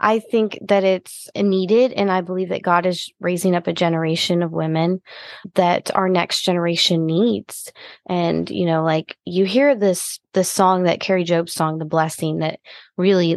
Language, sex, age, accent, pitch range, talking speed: English, female, 20-39, American, 170-205 Hz, 175 wpm